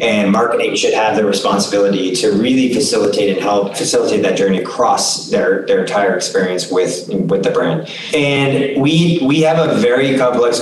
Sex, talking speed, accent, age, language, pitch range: male, 170 wpm, American, 30-49, English, 105-140 Hz